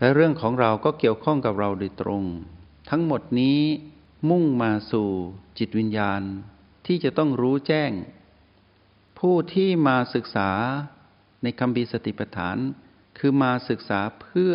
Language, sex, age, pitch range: Thai, male, 60-79, 100-135 Hz